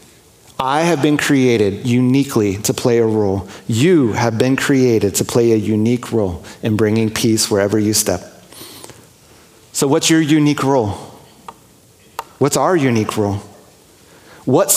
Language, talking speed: English, 140 wpm